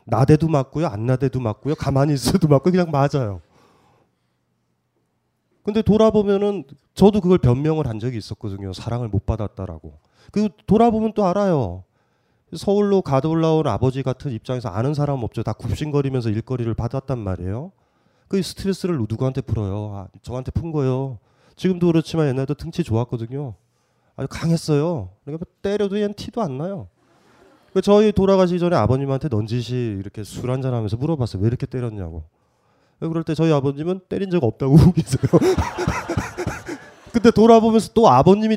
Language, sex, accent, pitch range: Korean, male, native, 120-190 Hz